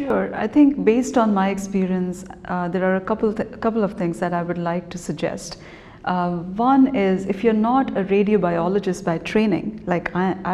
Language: English